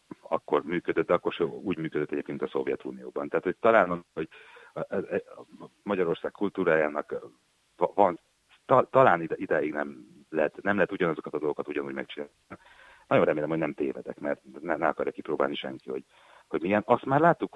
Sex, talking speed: male, 165 wpm